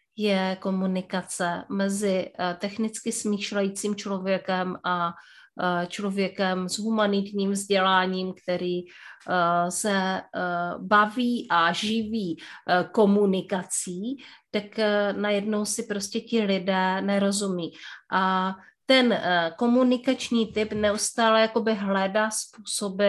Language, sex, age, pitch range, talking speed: Czech, female, 30-49, 195-240 Hz, 80 wpm